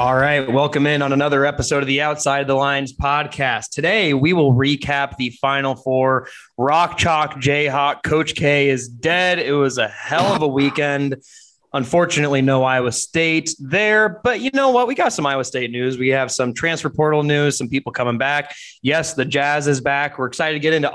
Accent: American